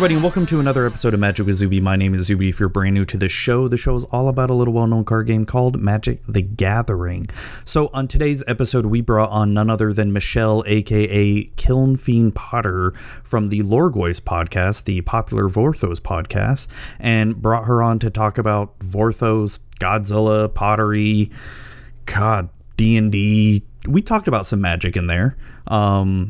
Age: 30-49